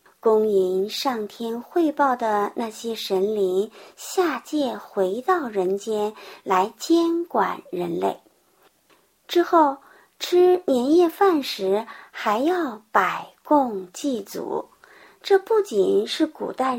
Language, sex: Chinese, male